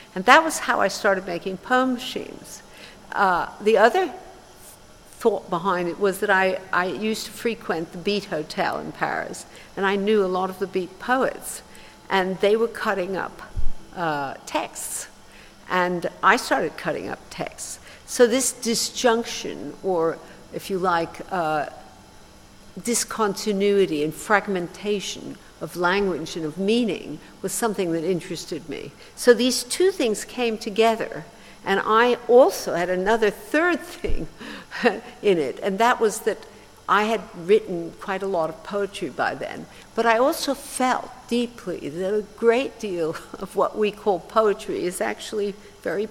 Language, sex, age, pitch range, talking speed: English, female, 60-79, 190-240 Hz, 150 wpm